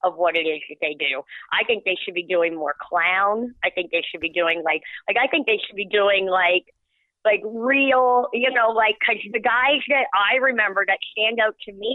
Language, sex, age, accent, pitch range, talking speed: English, female, 40-59, American, 180-220 Hz, 230 wpm